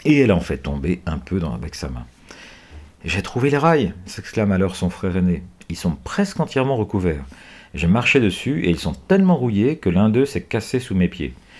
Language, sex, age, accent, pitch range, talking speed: French, male, 50-69, French, 85-135 Hz, 210 wpm